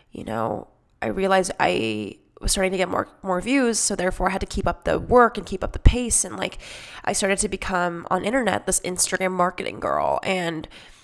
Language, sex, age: English, female, 10-29